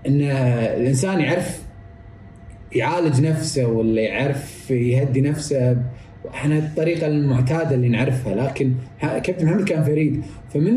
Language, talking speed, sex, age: Arabic, 110 wpm, male, 30-49